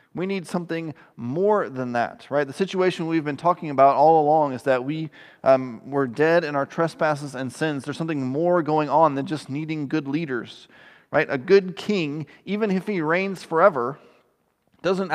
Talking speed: 180 wpm